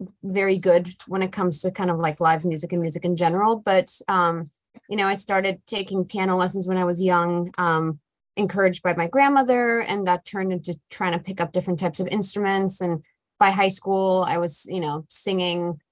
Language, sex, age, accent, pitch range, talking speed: English, female, 20-39, American, 180-210 Hz, 205 wpm